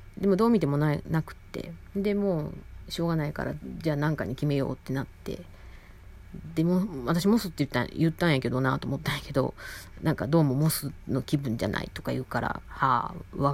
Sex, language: female, Japanese